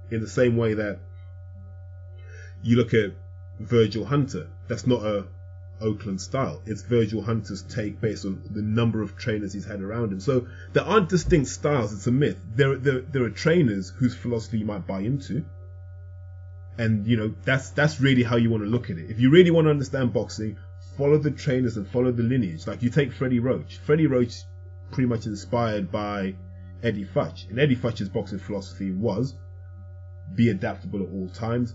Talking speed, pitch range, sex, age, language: 185 wpm, 90-120 Hz, male, 20-39, English